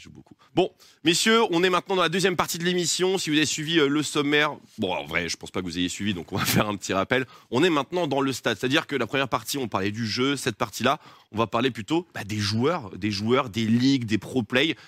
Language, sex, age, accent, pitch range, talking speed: French, male, 20-39, French, 105-165 Hz, 265 wpm